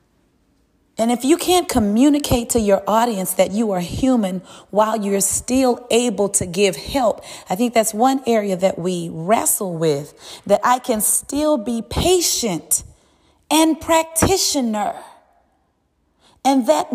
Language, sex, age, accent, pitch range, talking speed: English, female, 30-49, American, 175-225 Hz, 135 wpm